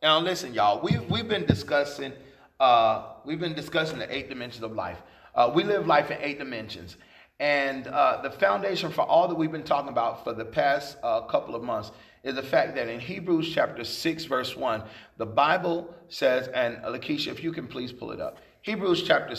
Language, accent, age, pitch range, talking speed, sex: English, American, 40-59, 140-185 Hz, 200 wpm, male